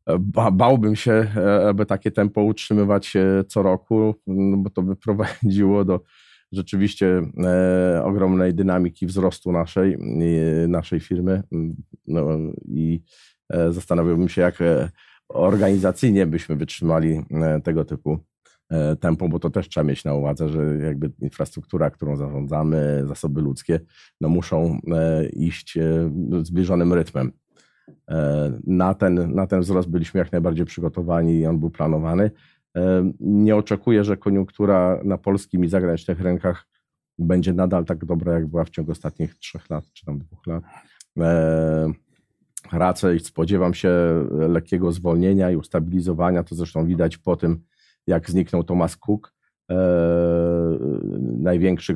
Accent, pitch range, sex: native, 80-95 Hz, male